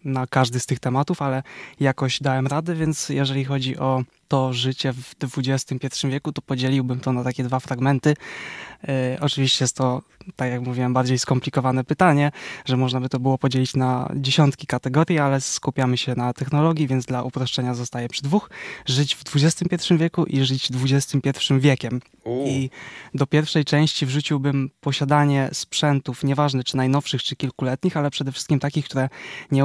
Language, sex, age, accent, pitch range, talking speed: Polish, male, 20-39, native, 130-145 Hz, 165 wpm